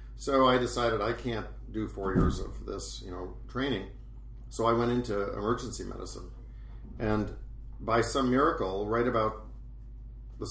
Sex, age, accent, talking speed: male, 50-69, American, 150 wpm